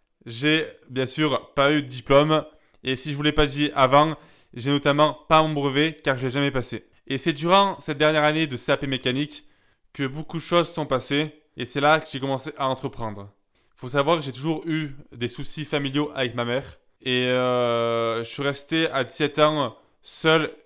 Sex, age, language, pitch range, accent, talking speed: male, 20-39, French, 130-155 Hz, French, 205 wpm